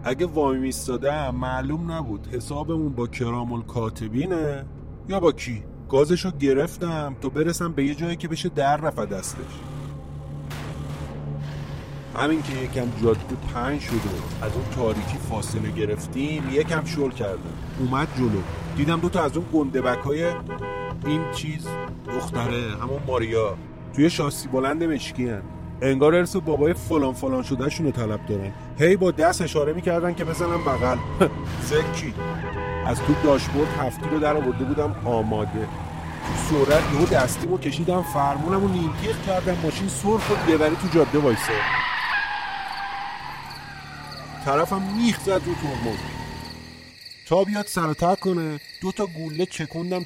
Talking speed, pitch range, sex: 135 wpm, 110-160 Hz, male